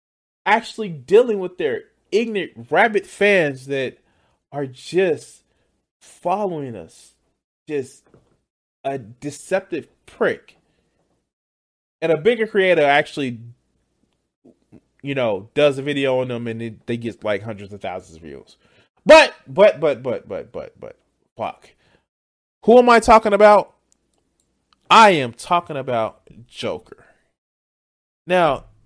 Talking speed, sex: 120 wpm, male